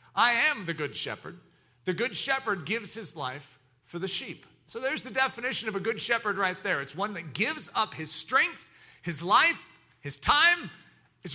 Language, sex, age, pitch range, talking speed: English, male, 40-59, 155-215 Hz, 190 wpm